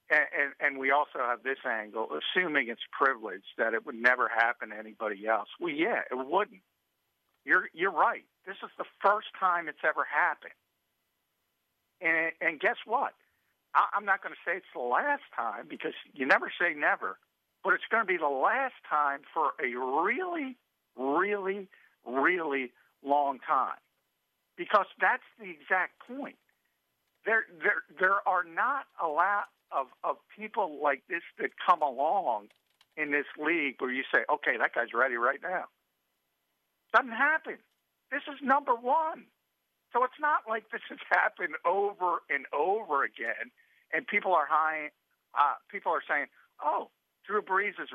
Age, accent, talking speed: 50-69, American, 165 wpm